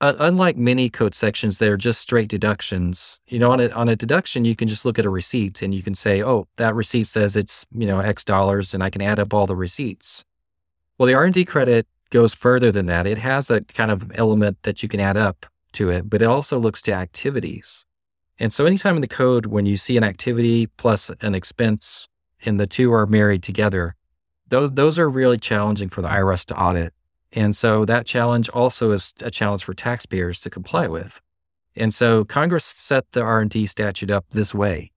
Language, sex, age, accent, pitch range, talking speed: English, male, 30-49, American, 95-115 Hz, 215 wpm